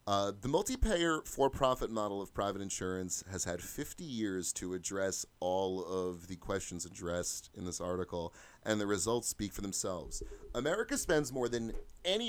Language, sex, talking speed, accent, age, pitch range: English, male, 160 wpm, American, 30-49, 100-155 Hz